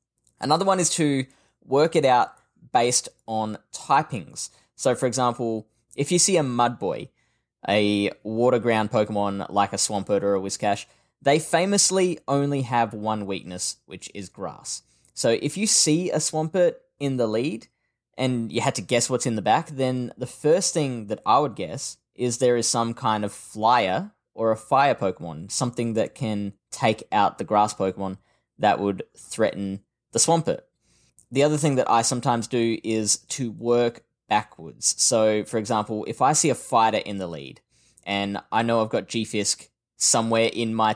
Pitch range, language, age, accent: 105-130 Hz, English, 10-29, Australian